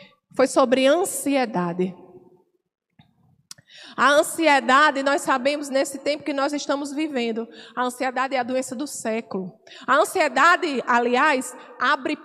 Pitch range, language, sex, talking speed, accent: 240-300 Hz, Portuguese, female, 120 wpm, Brazilian